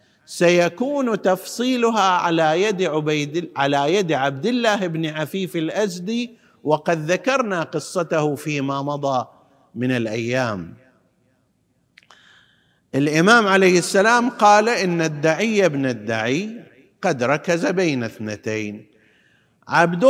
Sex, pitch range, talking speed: male, 145-215 Hz, 95 wpm